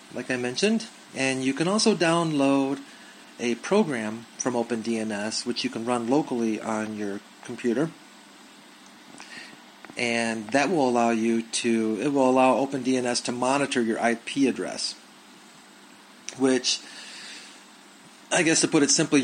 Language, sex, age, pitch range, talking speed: English, male, 30-49, 115-135 Hz, 130 wpm